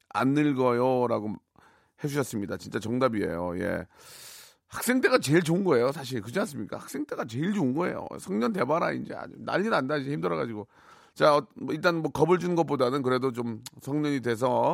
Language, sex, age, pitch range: Korean, male, 40-59, 115-155 Hz